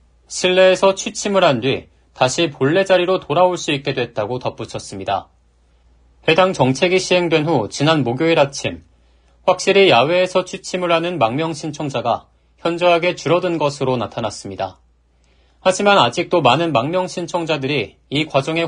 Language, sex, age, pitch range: Korean, male, 40-59, 110-180 Hz